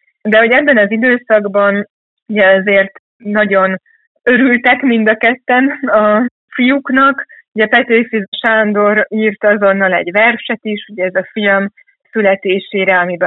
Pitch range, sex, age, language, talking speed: 185-215 Hz, female, 20-39, Hungarian, 125 wpm